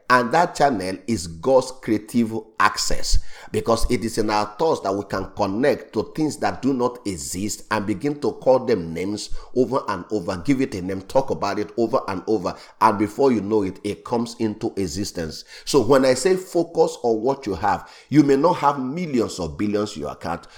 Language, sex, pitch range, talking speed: English, male, 95-130 Hz, 205 wpm